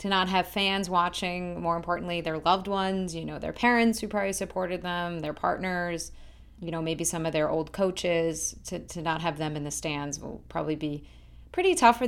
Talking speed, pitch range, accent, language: 210 wpm, 160-195 Hz, American, English